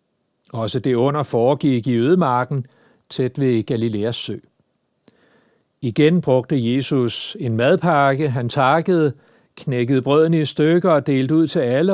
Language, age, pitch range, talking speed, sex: Danish, 60-79, 130-170 Hz, 130 wpm, male